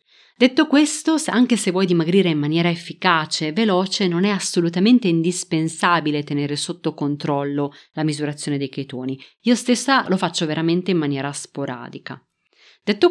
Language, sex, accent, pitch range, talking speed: Italian, female, native, 150-215 Hz, 140 wpm